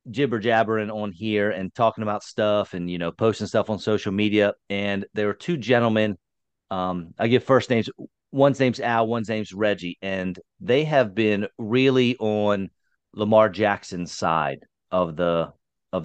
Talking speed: 165 wpm